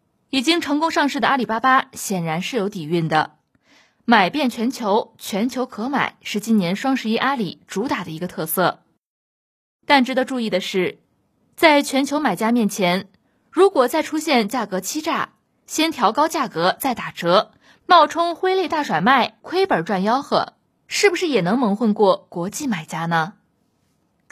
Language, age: Chinese, 20-39